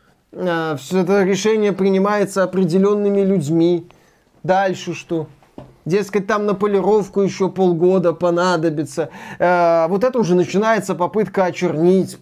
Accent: native